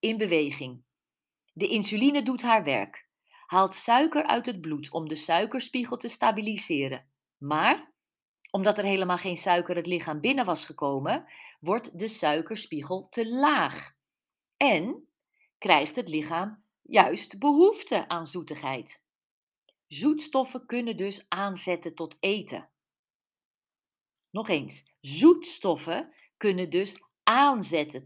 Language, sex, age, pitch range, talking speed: Dutch, female, 40-59, 160-235 Hz, 110 wpm